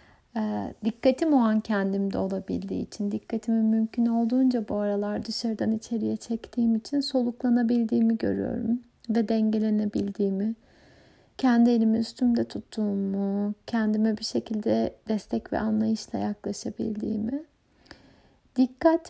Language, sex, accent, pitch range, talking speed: Turkish, female, native, 215-240 Hz, 95 wpm